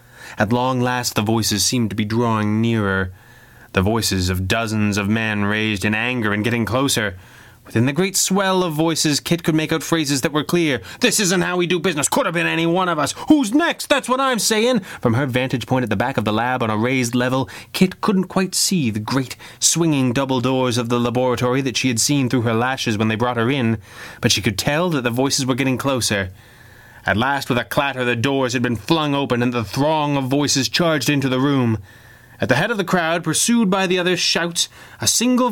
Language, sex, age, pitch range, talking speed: English, male, 20-39, 115-170 Hz, 230 wpm